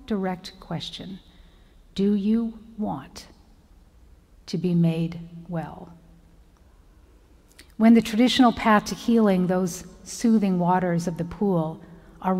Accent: American